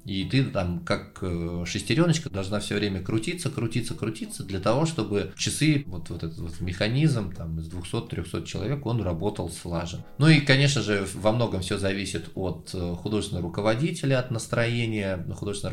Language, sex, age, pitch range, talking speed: Russian, male, 20-39, 90-120 Hz, 155 wpm